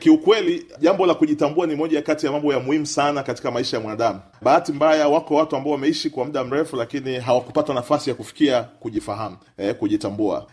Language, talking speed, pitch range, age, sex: Swahili, 195 wpm, 135-160 Hz, 30-49, male